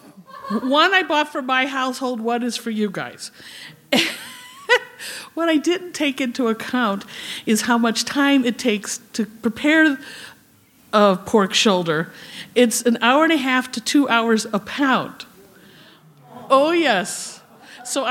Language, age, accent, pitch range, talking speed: English, 50-69, American, 215-275 Hz, 140 wpm